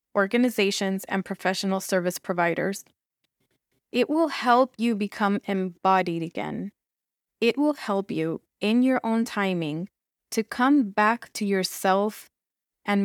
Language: English